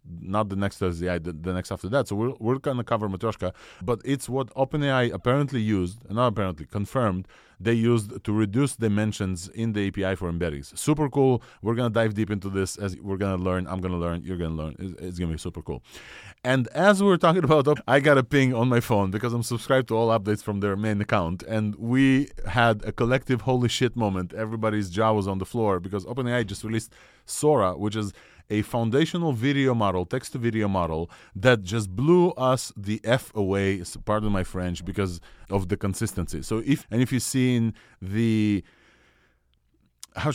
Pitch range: 95-125 Hz